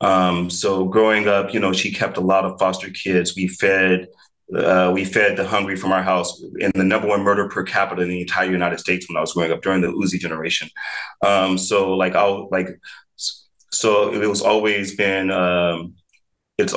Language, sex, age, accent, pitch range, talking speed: English, male, 30-49, American, 90-100 Hz, 200 wpm